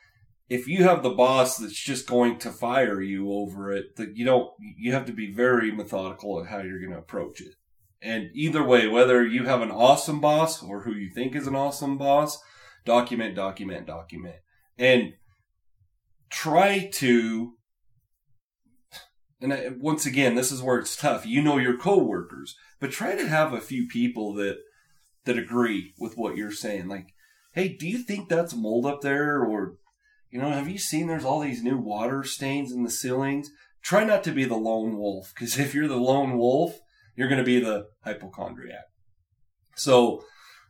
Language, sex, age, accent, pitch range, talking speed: English, male, 30-49, American, 105-145 Hz, 180 wpm